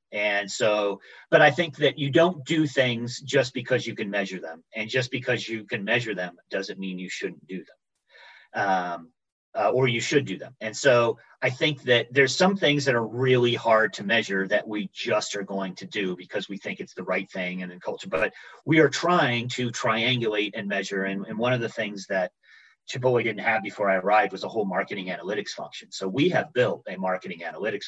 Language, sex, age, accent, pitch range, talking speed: English, male, 40-59, American, 95-130 Hz, 215 wpm